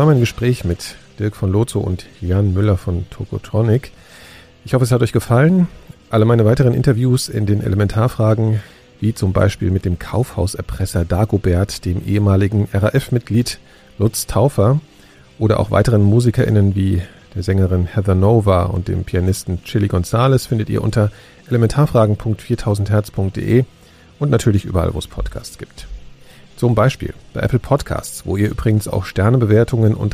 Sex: male